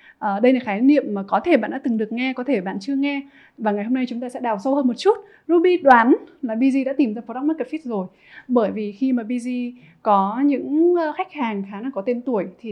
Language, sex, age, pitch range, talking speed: Vietnamese, female, 20-39, 210-280 Hz, 265 wpm